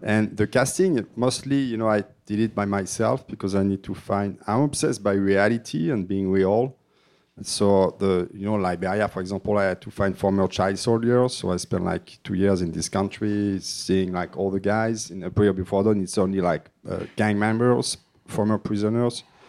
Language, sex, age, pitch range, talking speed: English, male, 40-59, 95-120 Hz, 200 wpm